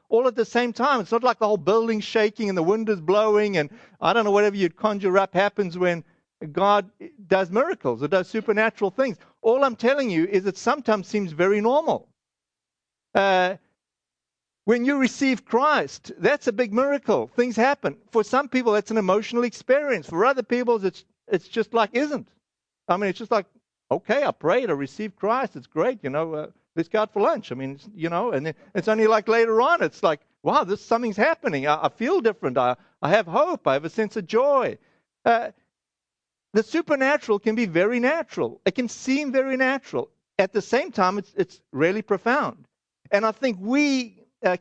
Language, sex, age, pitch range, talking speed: English, male, 50-69, 190-240 Hz, 195 wpm